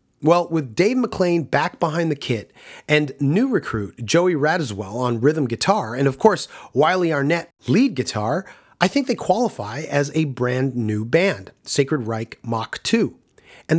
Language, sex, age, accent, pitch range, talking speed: English, male, 30-49, American, 125-170 Hz, 160 wpm